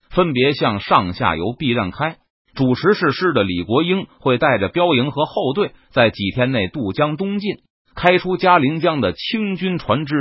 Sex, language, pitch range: male, Chinese, 120-185 Hz